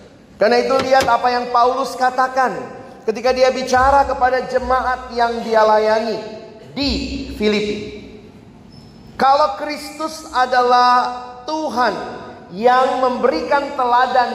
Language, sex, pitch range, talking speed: Indonesian, male, 180-250 Hz, 100 wpm